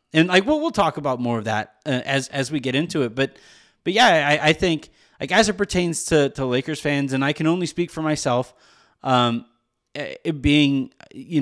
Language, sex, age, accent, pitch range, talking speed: English, male, 30-49, American, 125-165 Hz, 215 wpm